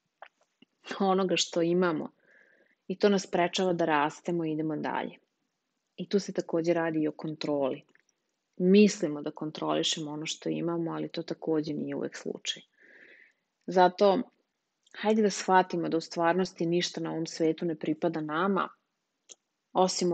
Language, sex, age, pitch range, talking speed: English, female, 30-49, 160-185 Hz, 140 wpm